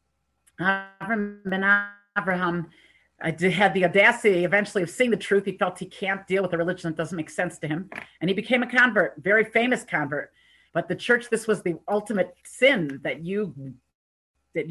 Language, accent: English, American